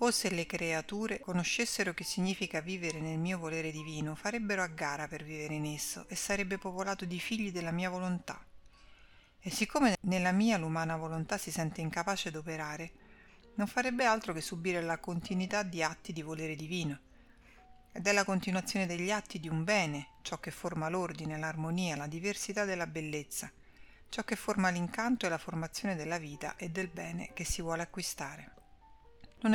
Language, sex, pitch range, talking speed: Italian, female, 160-195 Hz, 170 wpm